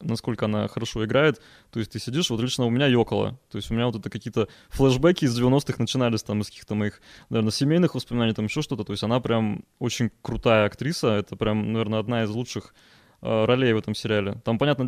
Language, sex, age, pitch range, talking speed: Russian, male, 20-39, 110-140 Hz, 220 wpm